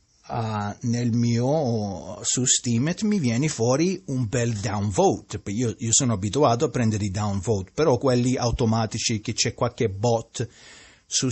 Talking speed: 145 wpm